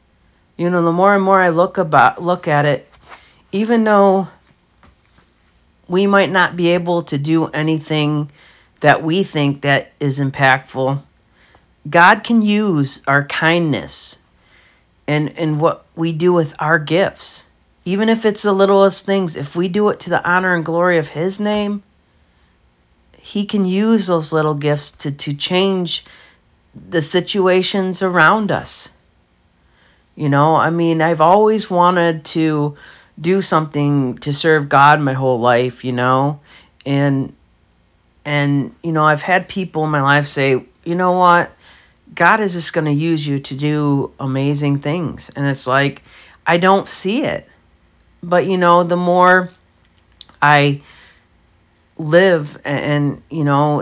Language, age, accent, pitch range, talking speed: English, 40-59, American, 140-180 Hz, 145 wpm